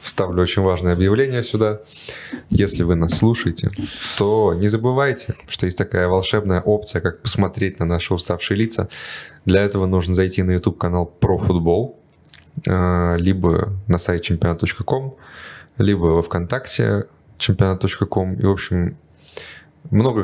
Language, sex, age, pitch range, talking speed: Russian, male, 20-39, 85-105 Hz, 125 wpm